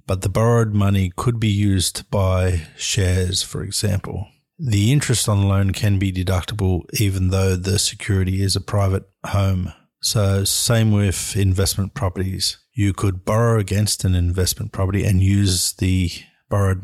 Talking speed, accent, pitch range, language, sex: 155 wpm, Australian, 95-110 Hz, English, male